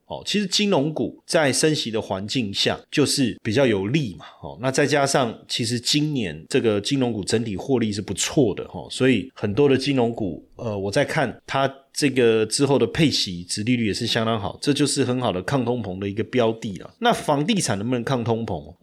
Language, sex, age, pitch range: Chinese, male, 30-49, 110-135 Hz